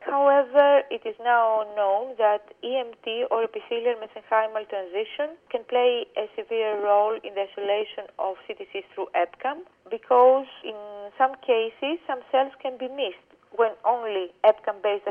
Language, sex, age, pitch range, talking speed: English, female, 40-59, 215-265 Hz, 140 wpm